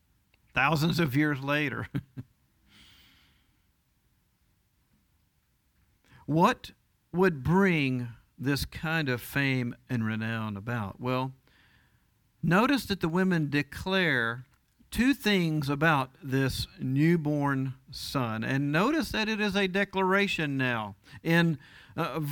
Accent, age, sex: American, 50-69, male